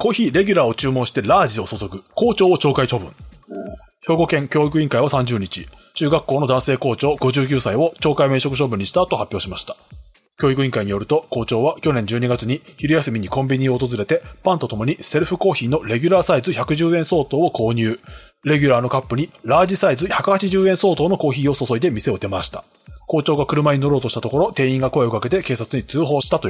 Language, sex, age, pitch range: Japanese, male, 30-49, 125-165 Hz